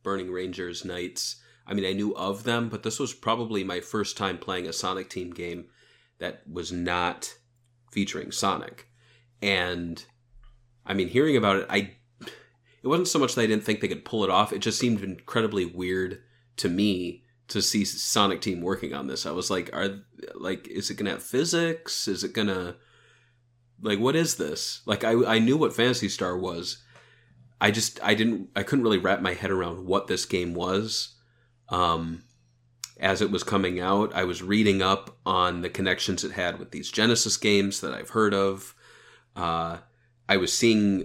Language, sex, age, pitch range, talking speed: English, male, 30-49, 95-120 Hz, 185 wpm